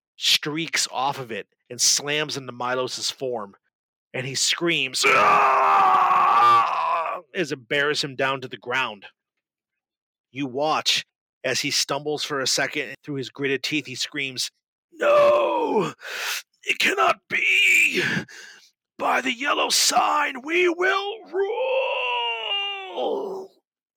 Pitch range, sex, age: 130-180 Hz, male, 30-49